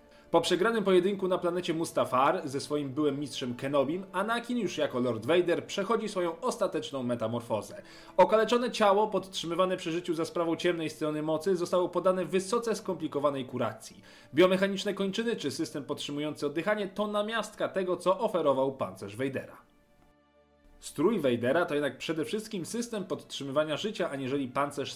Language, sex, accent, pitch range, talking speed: Polish, male, native, 140-200 Hz, 140 wpm